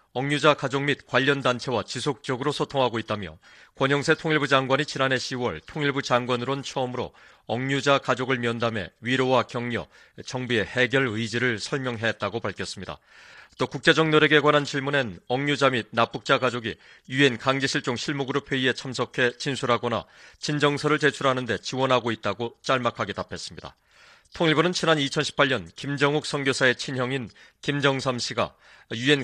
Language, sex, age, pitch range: Korean, male, 40-59, 120-140 Hz